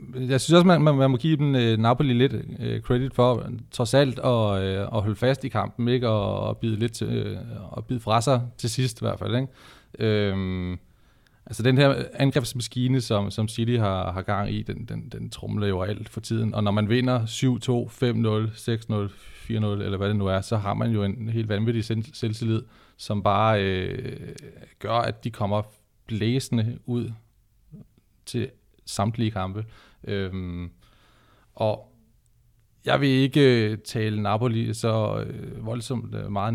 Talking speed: 175 wpm